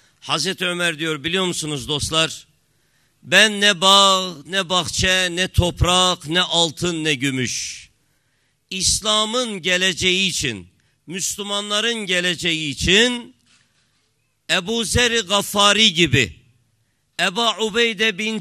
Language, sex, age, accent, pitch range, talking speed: Turkish, male, 50-69, native, 155-205 Hz, 100 wpm